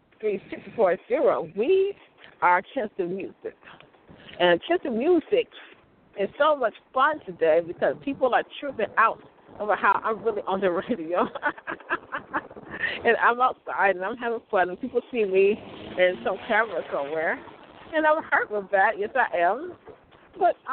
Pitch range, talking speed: 185-275 Hz, 150 wpm